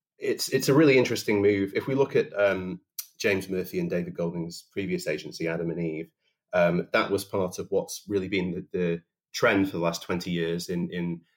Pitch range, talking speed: 85-100 Hz, 205 wpm